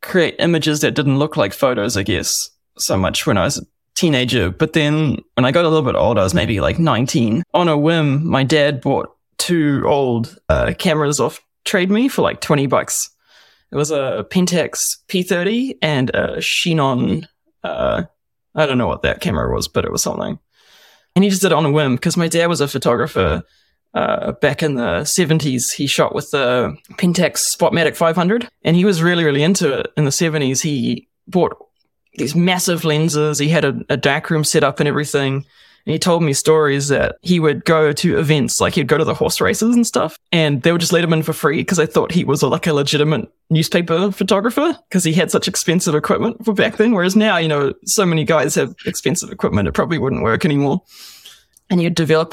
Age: 20-39